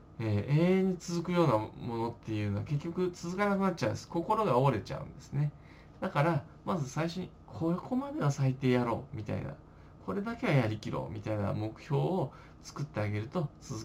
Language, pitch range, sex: Japanese, 115-185 Hz, male